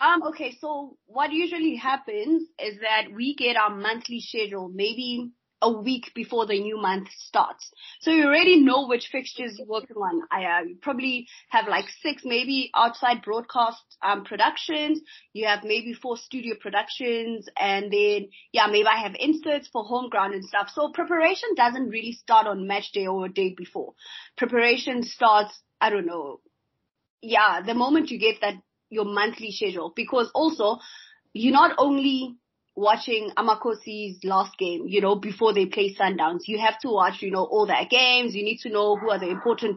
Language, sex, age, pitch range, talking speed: English, female, 20-39, 210-270 Hz, 175 wpm